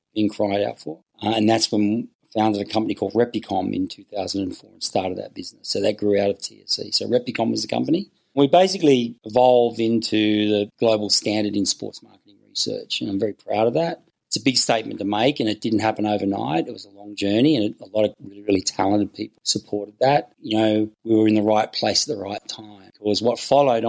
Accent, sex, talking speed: Australian, male, 225 wpm